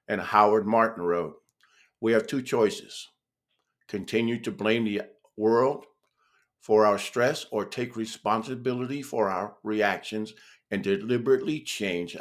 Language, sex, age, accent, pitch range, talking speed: English, male, 50-69, American, 105-130 Hz, 125 wpm